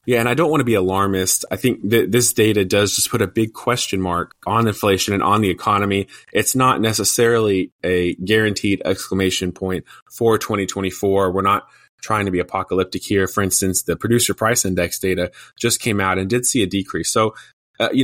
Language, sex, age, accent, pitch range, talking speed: English, male, 20-39, American, 90-110 Hz, 200 wpm